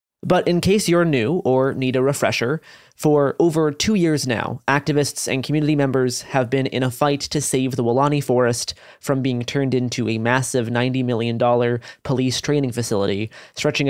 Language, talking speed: English, 175 wpm